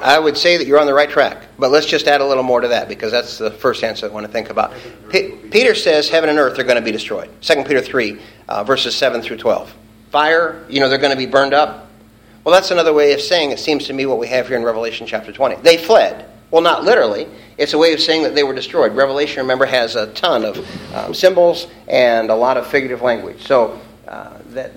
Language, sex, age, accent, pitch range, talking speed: English, male, 50-69, American, 115-150 Hz, 250 wpm